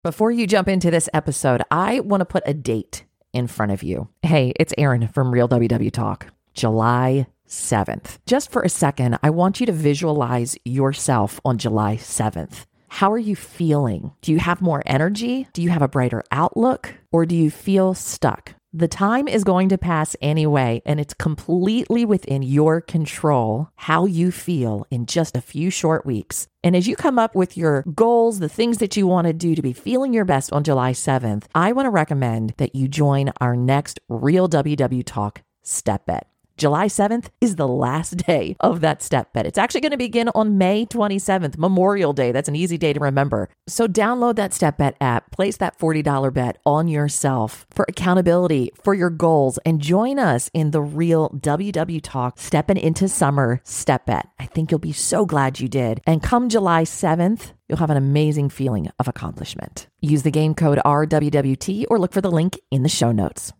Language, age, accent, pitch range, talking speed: English, 40-59, American, 130-185 Hz, 195 wpm